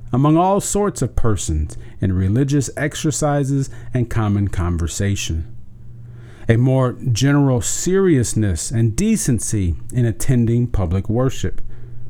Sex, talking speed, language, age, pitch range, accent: male, 105 wpm, English, 40-59, 110-135 Hz, American